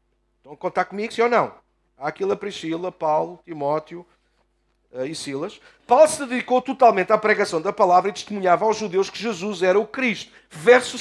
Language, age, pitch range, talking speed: Portuguese, 50-69, 160-225 Hz, 180 wpm